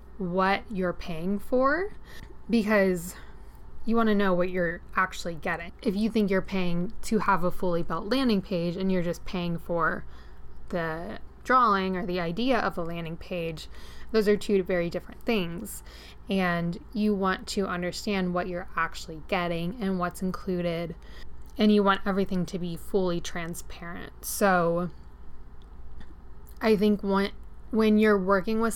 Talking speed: 150 wpm